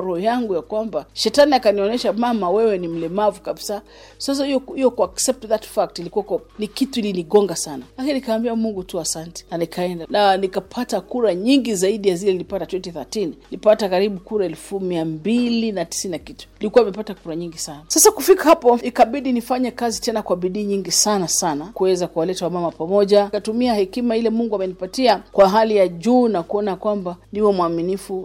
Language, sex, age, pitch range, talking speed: Swahili, female, 40-59, 185-240 Hz, 170 wpm